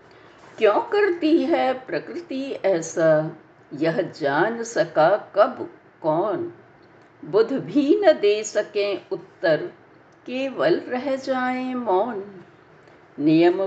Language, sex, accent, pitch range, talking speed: Hindi, female, native, 250-345 Hz, 90 wpm